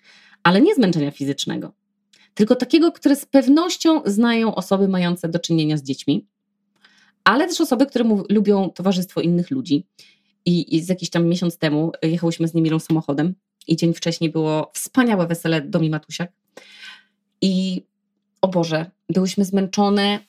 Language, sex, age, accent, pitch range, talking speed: Polish, female, 20-39, native, 165-210 Hz, 145 wpm